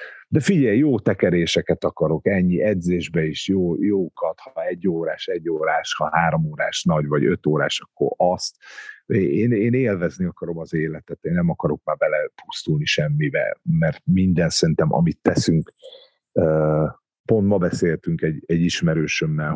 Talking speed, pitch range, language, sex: 145 wpm, 85-115 Hz, Hungarian, male